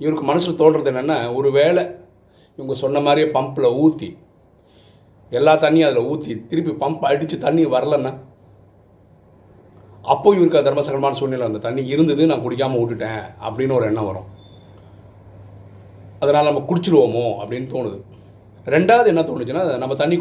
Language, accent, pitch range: Tamil, native, 105-145 Hz